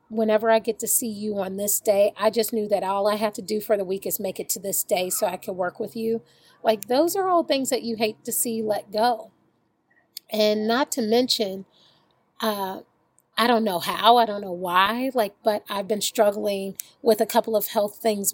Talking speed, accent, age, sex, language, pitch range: 225 wpm, American, 40-59, female, English, 210-245 Hz